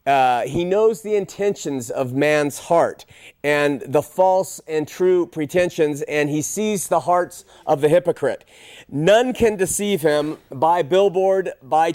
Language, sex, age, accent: English, male, 40-59, American